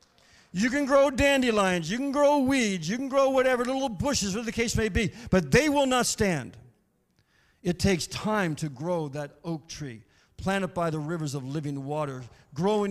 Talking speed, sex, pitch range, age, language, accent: 190 wpm, male, 185-255 Hz, 50-69, English, American